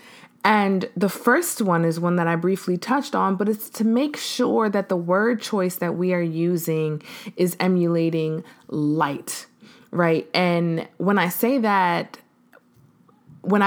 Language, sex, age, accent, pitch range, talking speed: English, female, 20-39, American, 170-225 Hz, 150 wpm